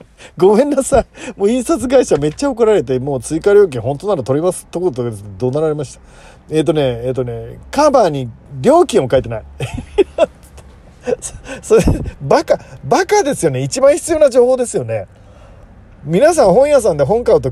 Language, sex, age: Japanese, male, 40-59